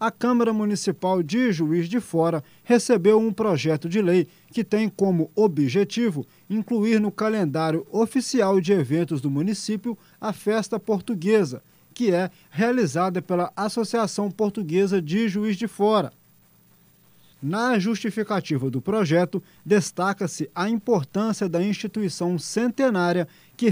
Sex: male